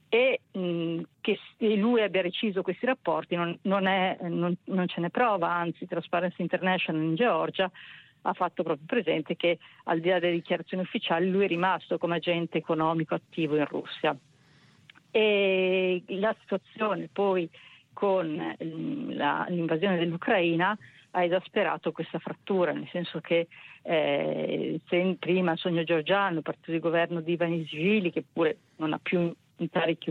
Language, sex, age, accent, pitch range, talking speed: Italian, female, 50-69, native, 165-185 Hz, 145 wpm